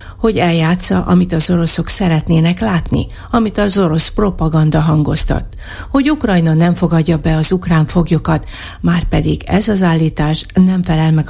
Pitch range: 145-180 Hz